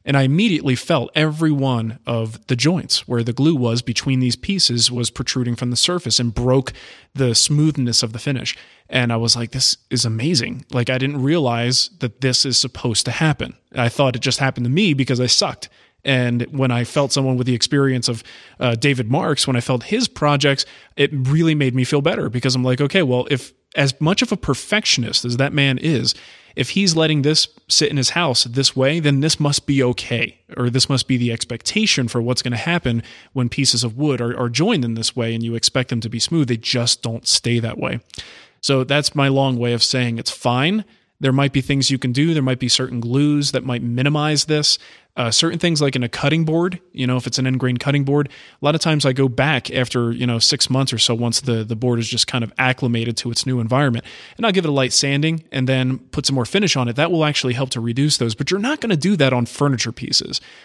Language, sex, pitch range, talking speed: English, male, 120-145 Hz, 240 wpm